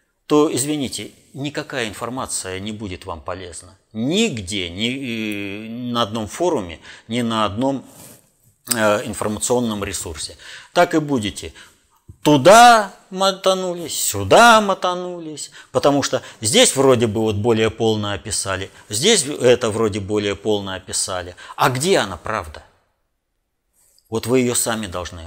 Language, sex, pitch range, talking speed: Russian, male, 100-135 Hz, 115 wpm